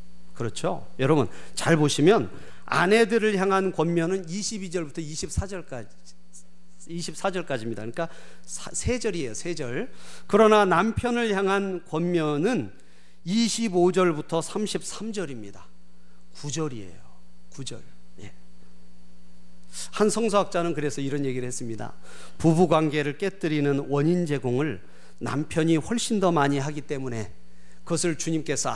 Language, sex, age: Korean, male, 40-59